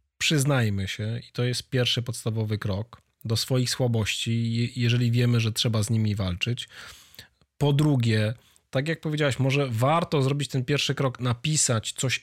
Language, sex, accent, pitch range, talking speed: Polish, male, native, 115-145 Hz, 150 wpm